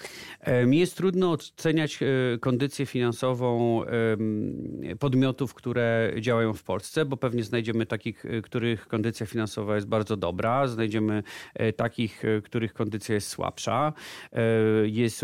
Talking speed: 110 wpm